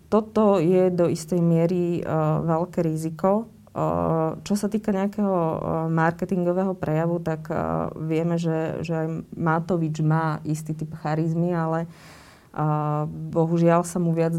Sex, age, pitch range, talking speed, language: female, 30-49, 160-175 Hz, 135 wpm, Slovak